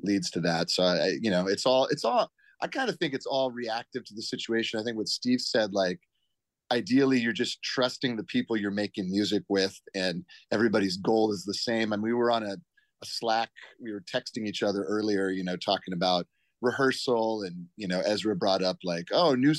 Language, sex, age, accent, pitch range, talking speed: English, male, 30-49, American, 105-130 Hz, 215 wpm